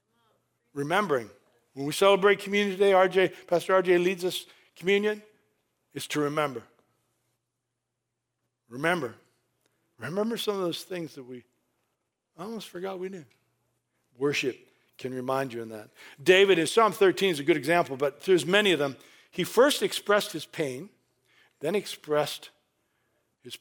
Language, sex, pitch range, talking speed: English, male, 140-185 Hz, 135 wpm